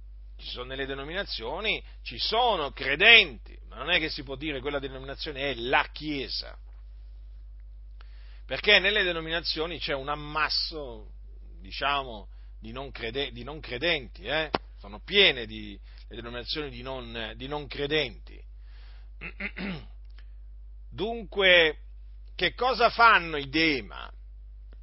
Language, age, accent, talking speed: Italian, 50-69, native, 110 wpm